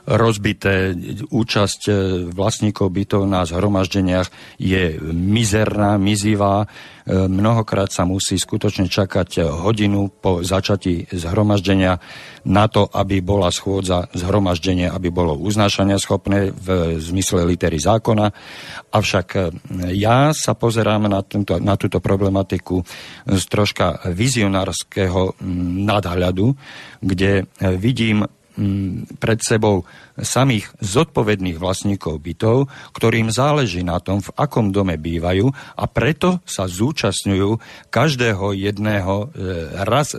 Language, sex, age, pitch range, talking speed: Slovak, male, 50-69, 90-110 Hz, 100 wpm